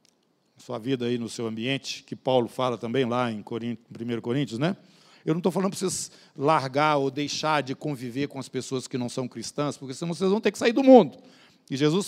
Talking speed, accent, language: 220 wpm, Brazilian, Portuguese